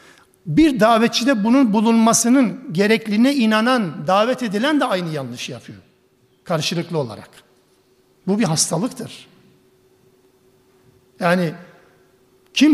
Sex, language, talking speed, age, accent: male, Turkish, 90 wpm, 60-79, native